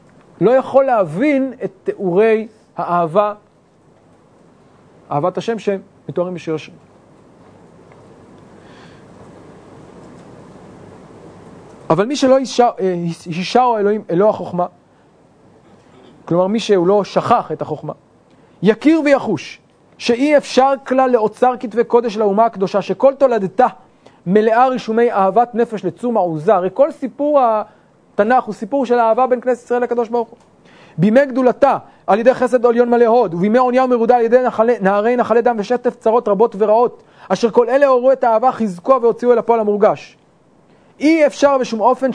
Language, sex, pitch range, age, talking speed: English, male, 190-245 Hz, 30-49, 130 wpm